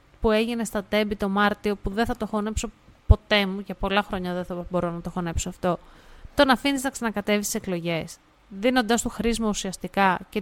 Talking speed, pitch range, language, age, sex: 200 wpm, 175-235 Hz, Greek, 30-49, female